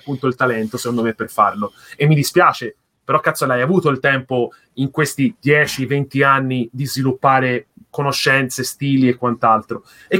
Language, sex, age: Italian, male, 30-49